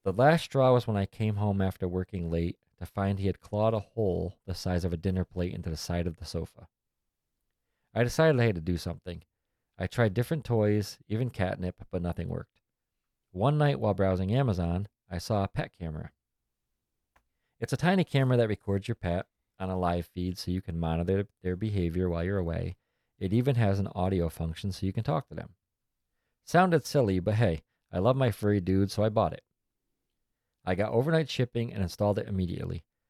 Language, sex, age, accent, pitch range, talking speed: English, male, 40-59, American, 90-115 Hz, 200 wpm